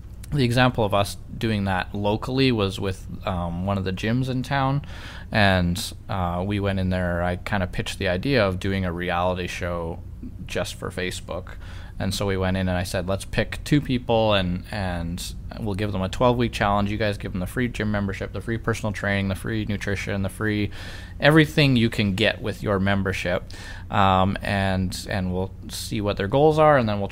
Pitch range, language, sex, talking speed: 95-110 Hz, English, male, 205 wpm